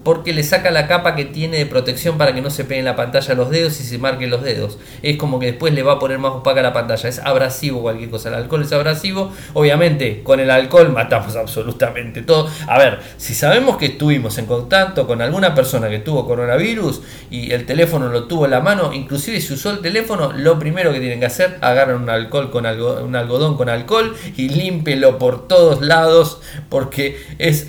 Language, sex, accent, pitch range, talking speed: Spanish, male, Argentinian, 125-165 Hz, 215 wpm